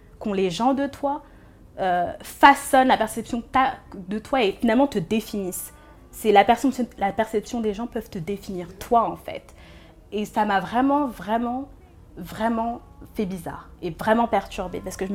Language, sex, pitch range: French, female, 205-250 Hz